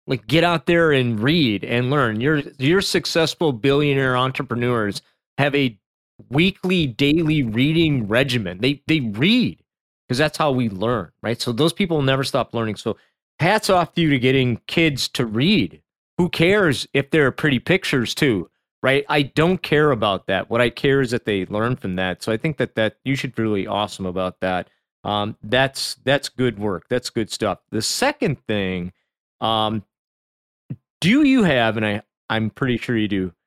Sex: male